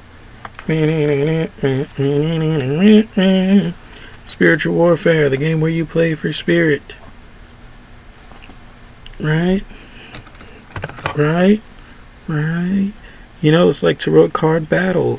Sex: male